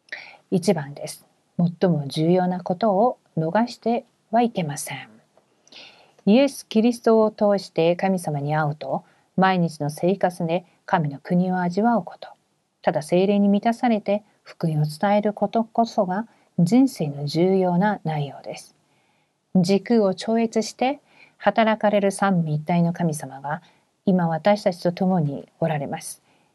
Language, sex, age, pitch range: Korean, female, 50-69, 170-225 Hz